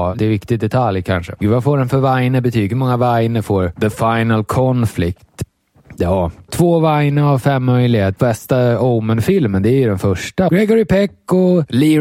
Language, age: Swedish, 20-39